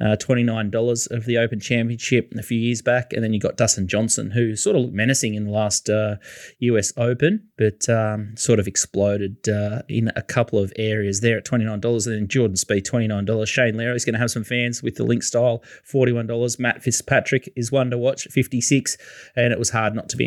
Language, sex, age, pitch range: English, male, 20-39, 110-130 Hz